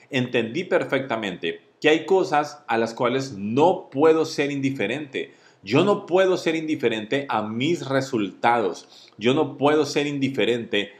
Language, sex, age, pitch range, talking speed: Spanish, male, 40-59, 110-145 Hz, 135 wpm